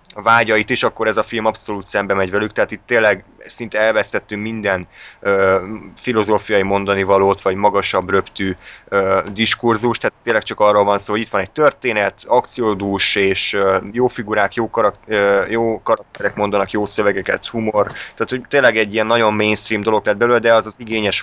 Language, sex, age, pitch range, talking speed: Hungarian, male, 20-39, 100-115 Hz, 180 wpm